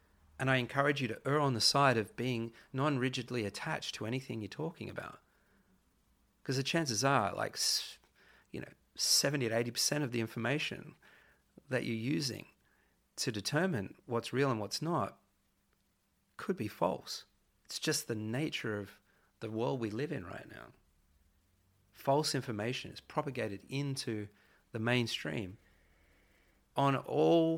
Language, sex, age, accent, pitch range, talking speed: English, male, 30-49, Australian, 95-140 Hz, 145 wpm